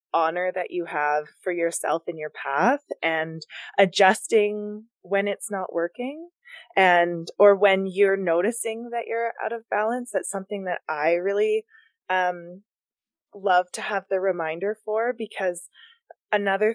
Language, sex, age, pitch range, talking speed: English, female, 20-39, 170-210 Hz, 140 wpm